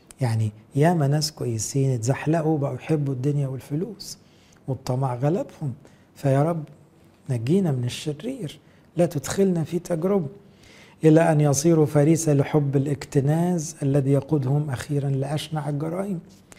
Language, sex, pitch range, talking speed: English, male, 130-165 Hz, 110 wpm